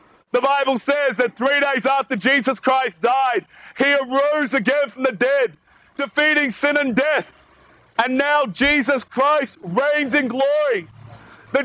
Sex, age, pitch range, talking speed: male, 30-49, 250-285 Hz, 145 wpm